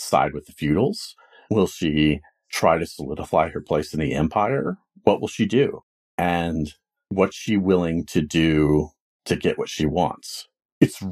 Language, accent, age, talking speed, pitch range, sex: English, American, 40-59, 160 wpm, 75-100 Hz, male